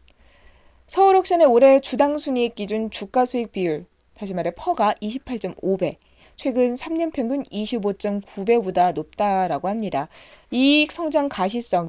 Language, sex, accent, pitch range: Korean, female, native, 185-270 Hz